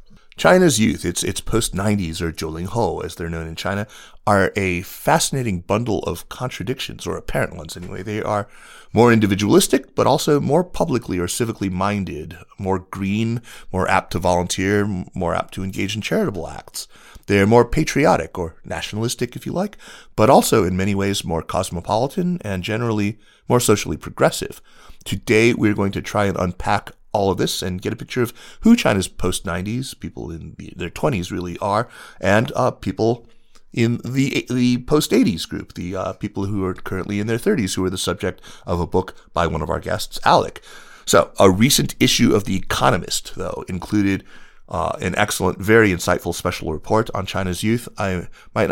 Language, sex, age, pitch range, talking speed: English, male, 30-49, 90-115 Hz, 175 wpm